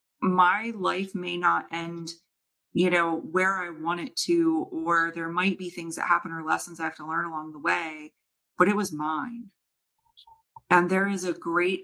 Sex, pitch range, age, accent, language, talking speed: female, 165-190 Hz, 30-49, American, English, 190 wpm